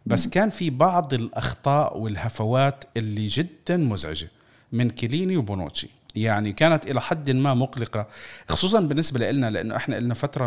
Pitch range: 115-145 Hz